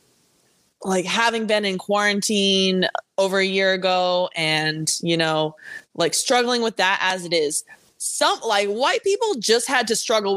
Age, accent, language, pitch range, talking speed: 20-39, American, English, 180-225 Hz, 155 wpm